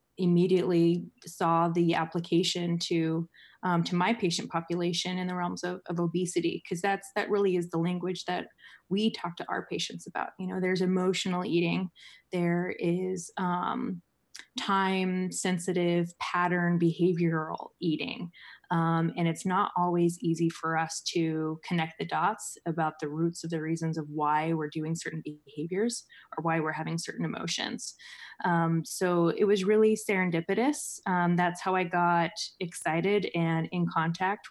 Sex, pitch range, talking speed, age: female, 165-185 Hz, 155 wpm, 20-39